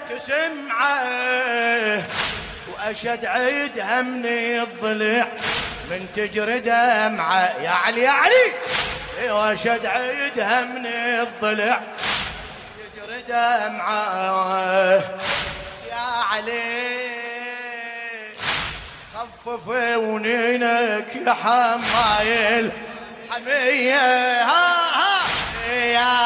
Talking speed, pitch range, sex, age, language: 70 wpm, 215-245 Hz, male, 20-39, Arabic